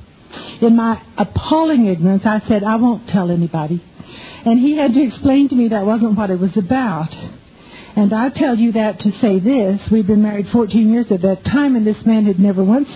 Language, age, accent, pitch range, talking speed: English, 60-79, American, 195-255 Hz, 210 wpm